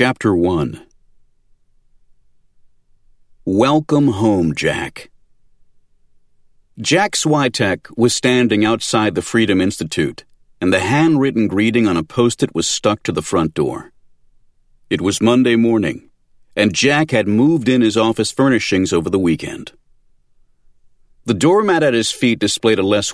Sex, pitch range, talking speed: male, 90-125 Hz, 125 wpm